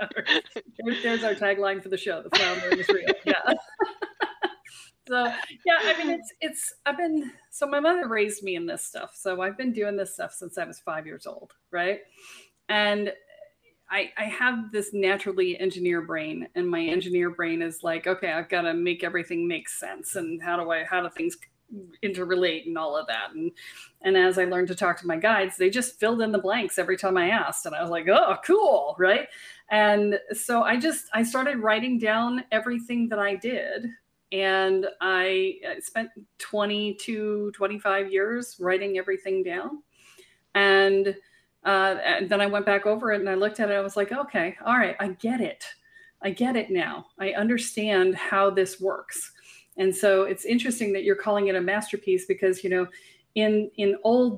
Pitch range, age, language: 190-245 Hz, 30-49, English